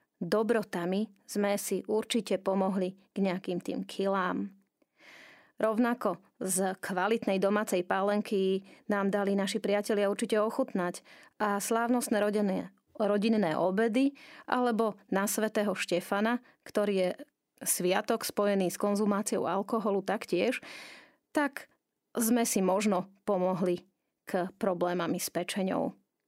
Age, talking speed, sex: 30-49, 105 wpm, female